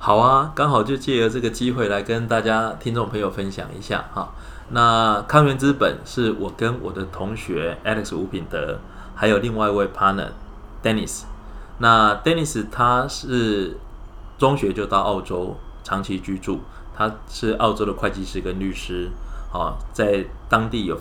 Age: 20-39